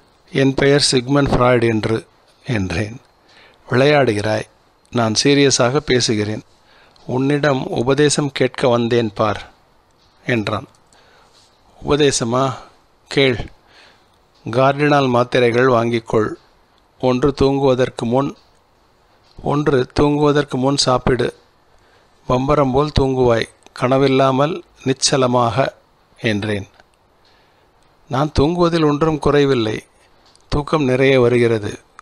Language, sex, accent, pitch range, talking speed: Tamil, male, native, 120-140 Hz, 75 wpm